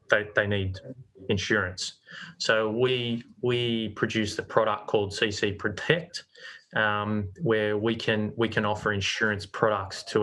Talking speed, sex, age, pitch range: 135 wpm, male, 20-39, 105-125 Hz